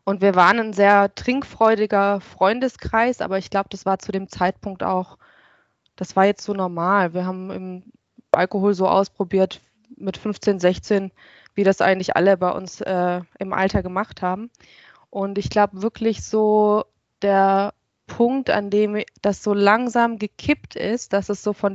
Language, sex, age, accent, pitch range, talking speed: German, female, 20-39, German, 190-210 Hz, 165 wpm